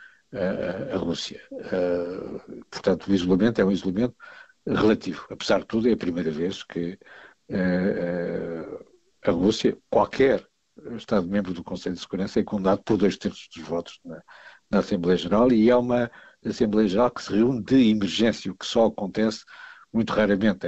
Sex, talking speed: male, 160 wpm